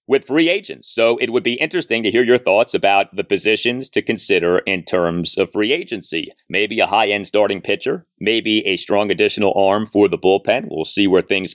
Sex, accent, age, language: male, American, 30-49, English